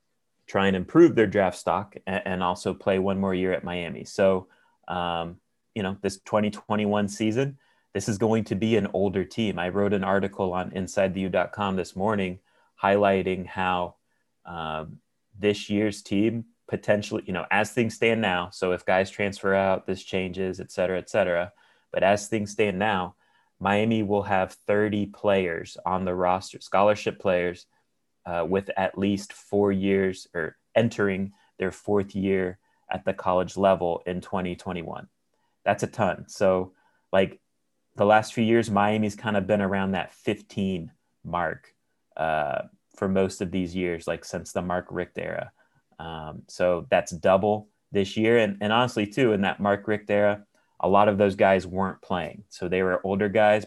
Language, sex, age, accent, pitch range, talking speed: English, male, 30-49, American, 90-105 Hz, 165 wpm